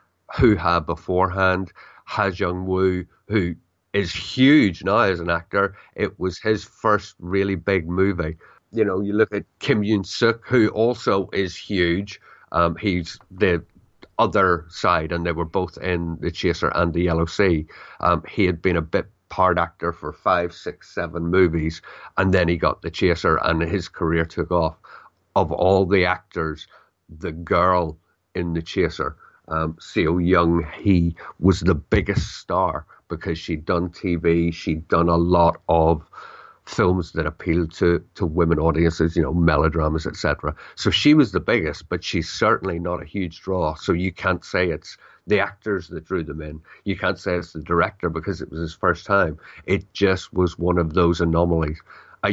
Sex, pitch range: male, 85-95 Hz